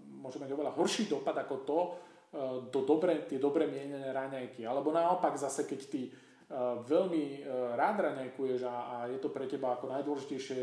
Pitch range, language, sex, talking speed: 130-150 Hz, Slovak, male, 160 wpm